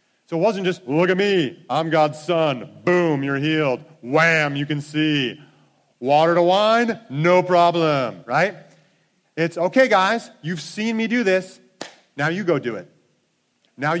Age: 40-59